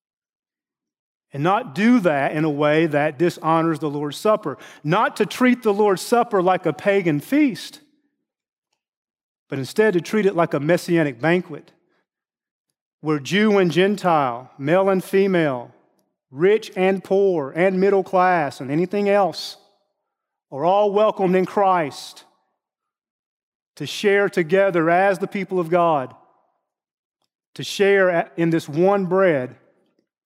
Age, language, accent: 40-59, English, American